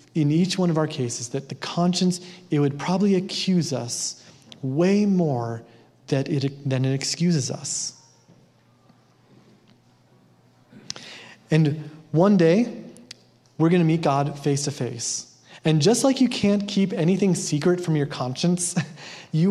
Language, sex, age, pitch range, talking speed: English, male, 30-49, 135-180 Hz, 135 wpm